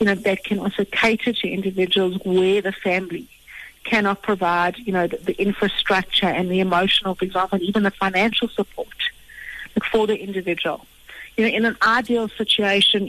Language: English